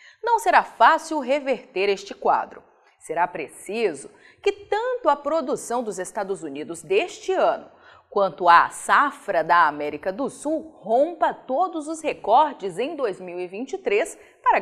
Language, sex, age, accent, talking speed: Portuguese, female, 30-49, Brazilian, 125 wpm